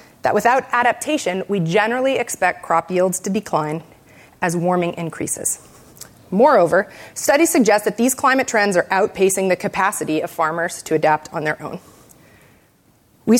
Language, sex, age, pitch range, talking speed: English, female, 30-49, 170-220 Hz, 145 wpm